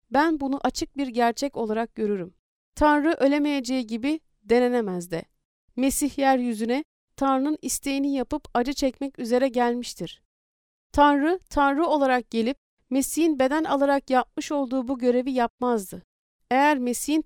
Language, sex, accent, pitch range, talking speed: Turkish, female, native, 245-290 Hz, 120 wpm